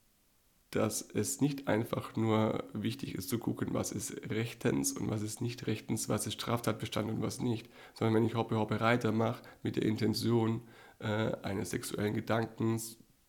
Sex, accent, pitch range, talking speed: male, German, 110-120 Hz, 165 wpm